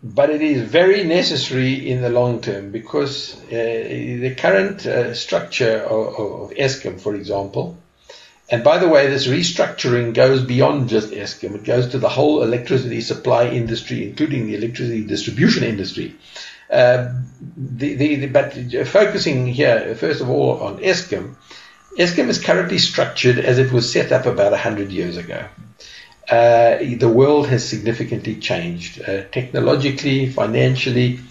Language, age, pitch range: English, 60-79, 110-135 Hz